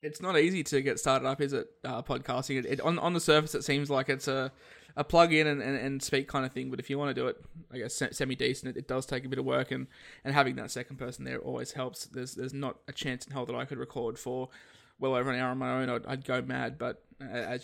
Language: English